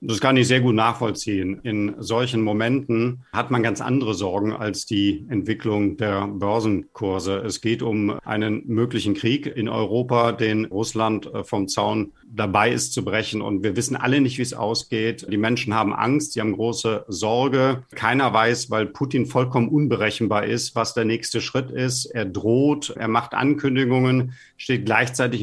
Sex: male